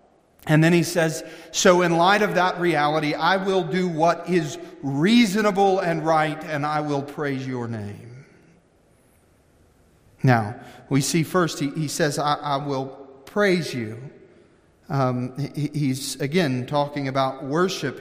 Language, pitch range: English, 145-205 Hz